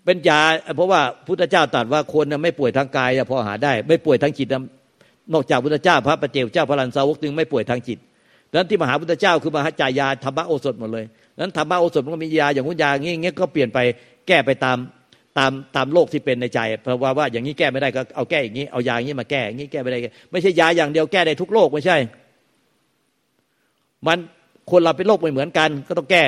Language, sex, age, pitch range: Thai, male, 60-79, 130-165 Hz